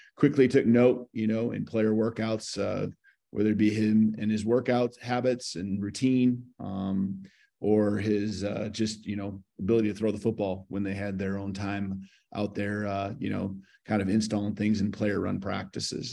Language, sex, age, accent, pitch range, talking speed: English, male, 30-49, American, 95-110 Hz, 185 wpm